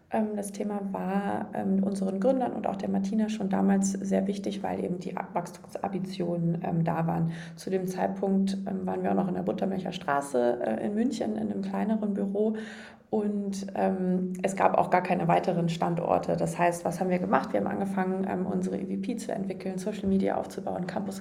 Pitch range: 180-200 Hz